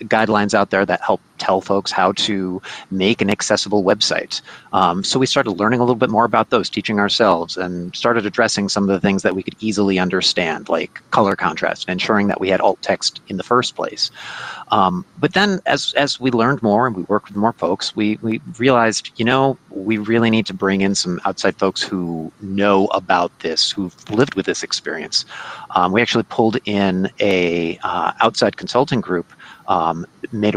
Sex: male